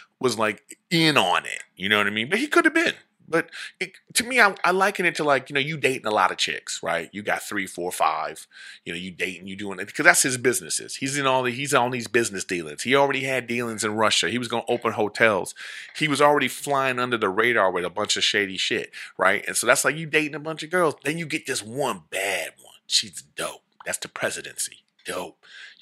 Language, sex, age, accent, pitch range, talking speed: English, male, 30-49, American, 110-155 Hz, 245 wpm